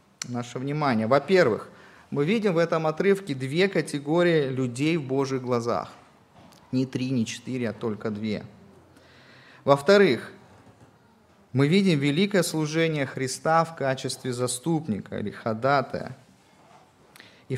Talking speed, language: 105 wpm, Russian